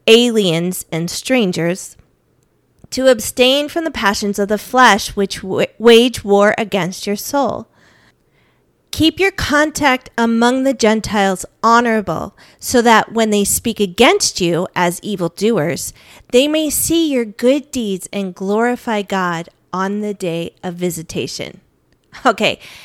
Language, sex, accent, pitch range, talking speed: English, female, American, 200-265 Hz, 130 wpm